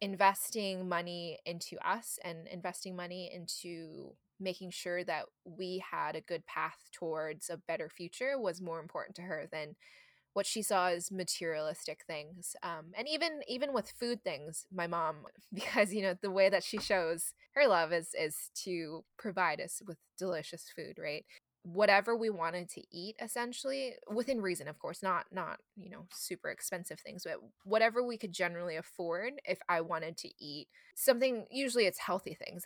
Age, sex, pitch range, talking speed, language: 20-39, female, 175-210 Hz, 170 wpm, English